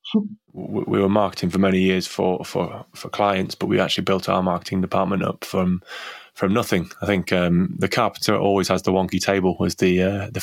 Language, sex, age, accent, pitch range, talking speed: English, male, 20-39, British, 90-100 Hz, 200 wpm